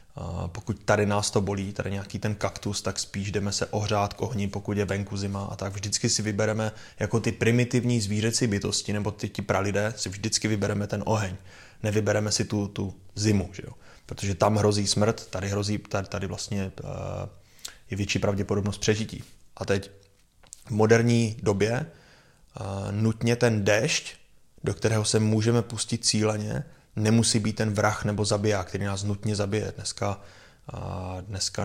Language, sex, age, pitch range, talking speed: Czech, male, 20-39, 100-110 Hz, 165 wpm